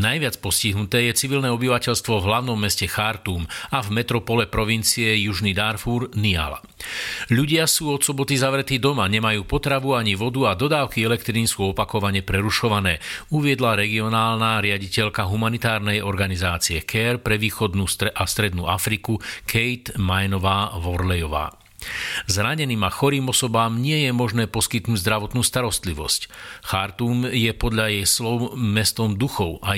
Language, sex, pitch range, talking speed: Slovak, male, 100-120 Hz, 125 wpm